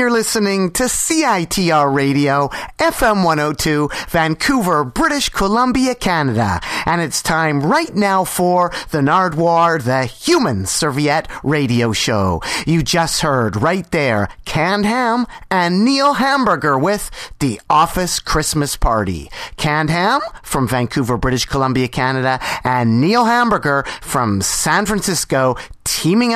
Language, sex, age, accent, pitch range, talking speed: English, male, 40-59, American, 140-235 Hz, 120 wpm